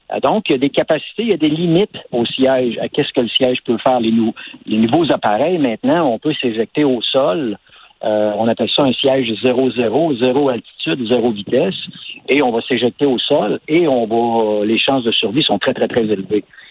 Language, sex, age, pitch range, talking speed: French, male, 60-79, 120-150 Hz, 210 wpm